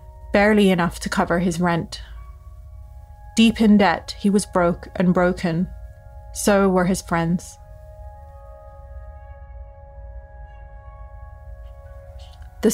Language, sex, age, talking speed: English, female, 30-49, 90 wpm